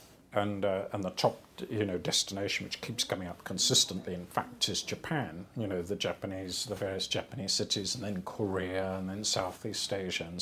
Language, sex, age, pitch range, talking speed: English, male, 50-69, 95-110 Hz, 190 wpm